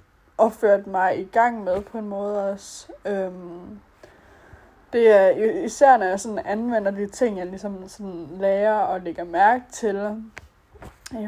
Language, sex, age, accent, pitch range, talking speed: Danish, female, 20-39, native, 190-225 Hz, 155 wpm